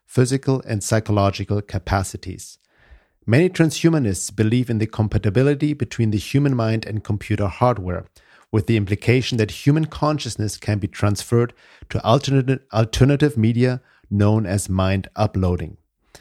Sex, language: male, English